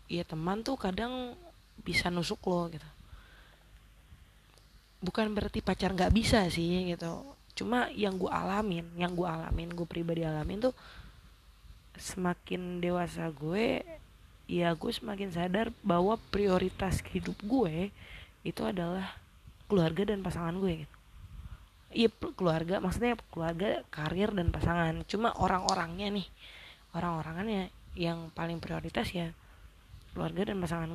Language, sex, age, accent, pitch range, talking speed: Indonesian, female, 20-39, native, 160-200 Hz, 120 wpm